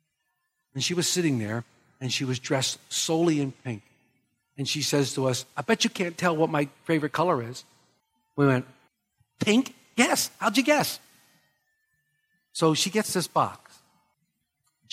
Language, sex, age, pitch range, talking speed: English, male, 60-79, 135-210 Hz, 160 wpm